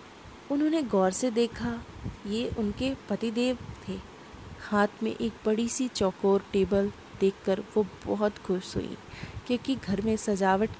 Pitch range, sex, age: 200-255 Hz, female, 20-39